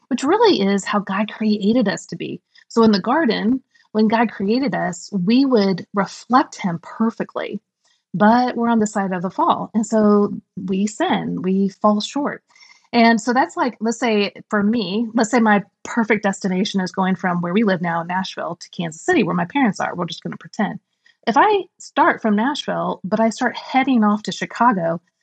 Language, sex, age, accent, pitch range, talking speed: English, female, 30-49, American, 190-235 Hz, 195 wpm